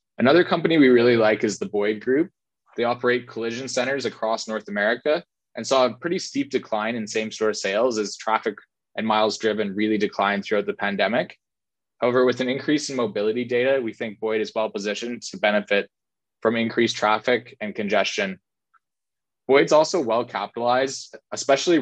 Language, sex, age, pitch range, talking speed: English, male, 20-39, 105-125 Hz, 170 wpm